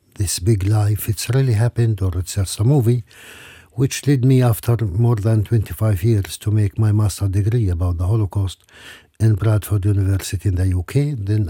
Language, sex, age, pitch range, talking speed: English, male, 60-79, 100-125 Hz, 175 wpm